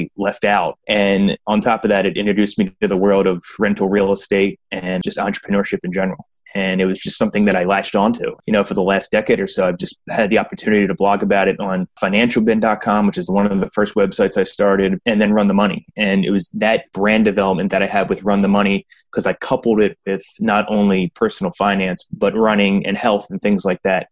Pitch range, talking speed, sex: 95-105 Hz, 235 wpm, male